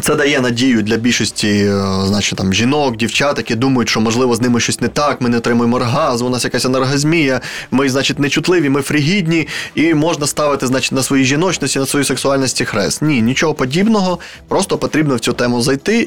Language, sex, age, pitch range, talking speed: Ukrainian, male, 20-39, 115-145 Hz, 185 wpm